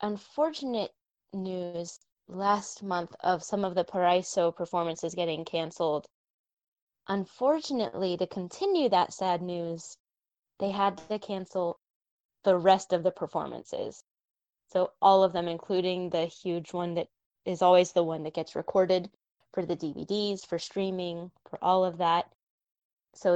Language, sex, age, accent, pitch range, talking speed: English, female, 10-29, American, 175-205 Hz, 135 wpm